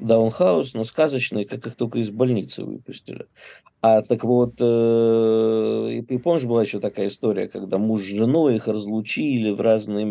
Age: 50-69